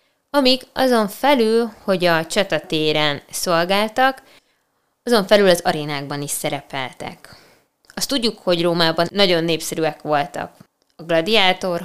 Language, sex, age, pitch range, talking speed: Hungarian, female, 20-39, 160-200 Hz, 110 wpm